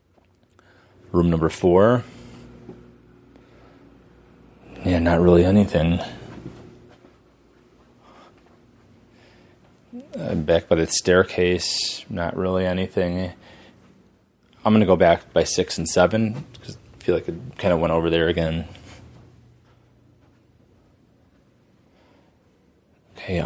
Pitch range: 85-115 Hz